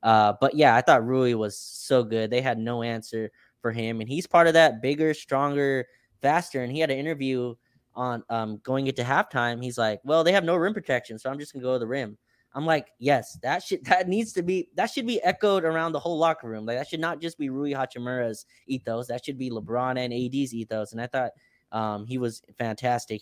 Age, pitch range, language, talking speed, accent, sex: 20-39, 110-130 Hz, English, 235 wpm, American, male